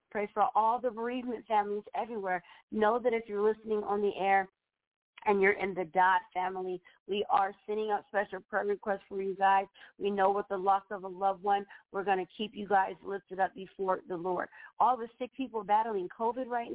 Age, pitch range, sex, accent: 40-59, 195-225 Hz, female, American